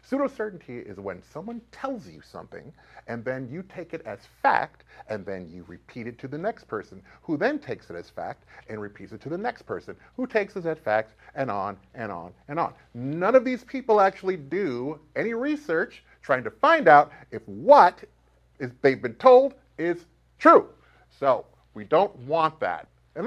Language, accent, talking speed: English, American, 190 wpm